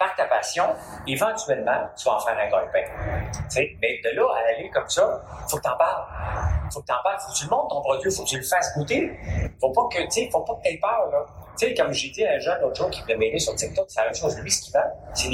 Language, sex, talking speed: French, male, 305 wpm